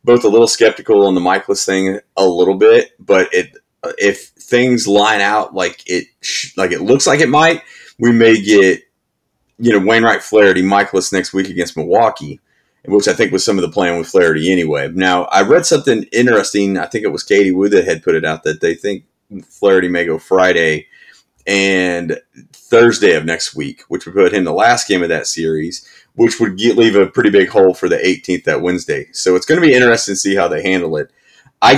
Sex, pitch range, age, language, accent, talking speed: male, 85-100 Hz, 30-49, English, American, 210 wpm